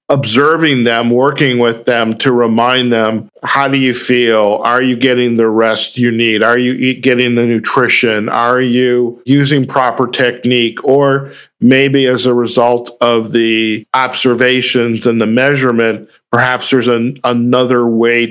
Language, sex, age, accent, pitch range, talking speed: English, male, 50-69, American, 115-130 Hz, 150 wpm